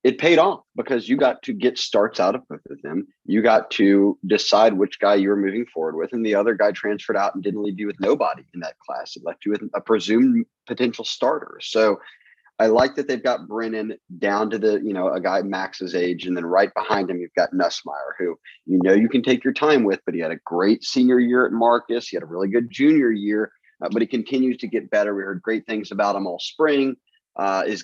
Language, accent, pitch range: English, American, 100-120 Hz